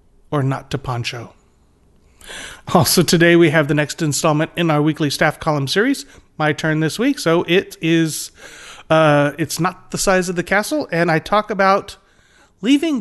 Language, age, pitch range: English, 30-49, 145-185 Hz